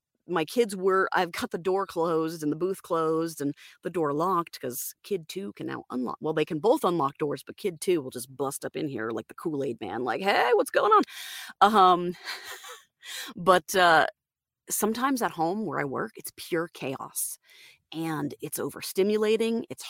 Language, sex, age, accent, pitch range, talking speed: English, female, 30-49, American, 165-265 Hz, 190 wpm